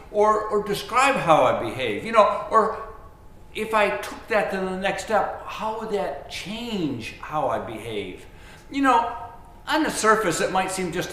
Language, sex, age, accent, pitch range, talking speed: English, male, 60-79, American, 135-215 Hz, 180 wpm